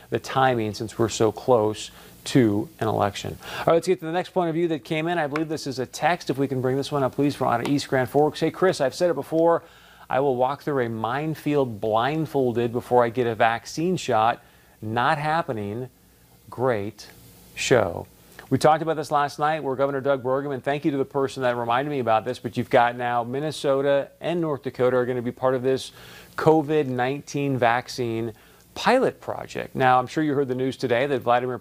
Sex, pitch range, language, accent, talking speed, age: male, 125-150 Hz, English, American, 215 wpm, 40-59